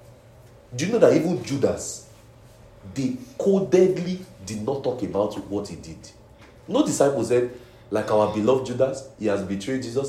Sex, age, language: male, 40-59, English